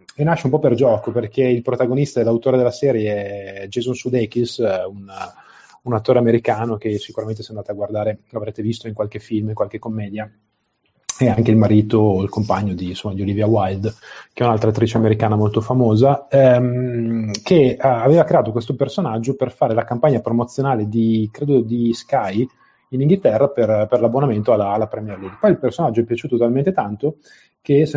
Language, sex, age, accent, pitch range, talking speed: Italian, male, 30-49, native, 110-125 Hz, 180 wpm